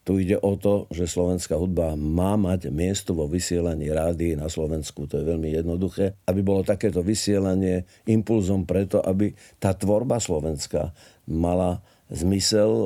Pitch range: 90-105 Hz